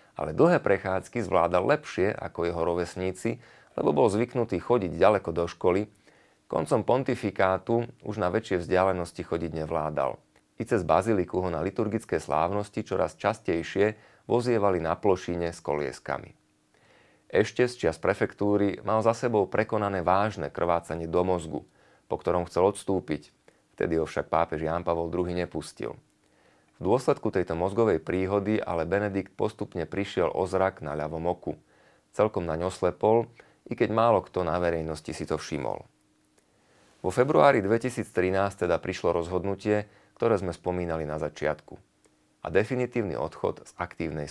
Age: 30-49